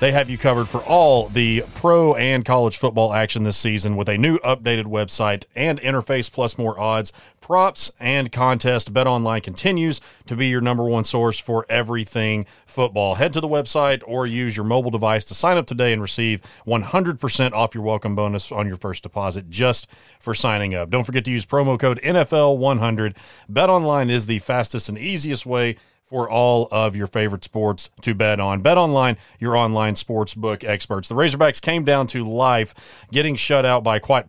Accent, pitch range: American, 110-135 Hz